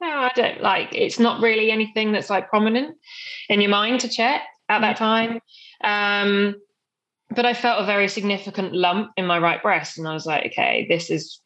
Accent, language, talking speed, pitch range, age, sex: British, English, 200 wpm, 165-200 Hz, 20-39, female